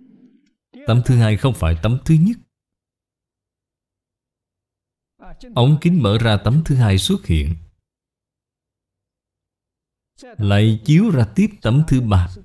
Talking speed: 115 wpm